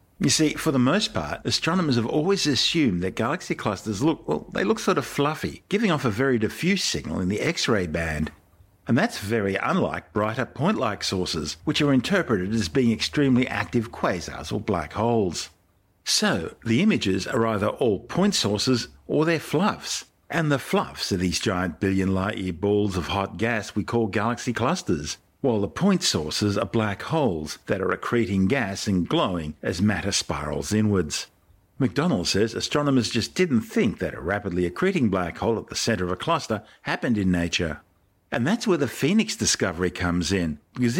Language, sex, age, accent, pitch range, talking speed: English, male, 50-69, Australian, 90-135 Hz, 180 wpm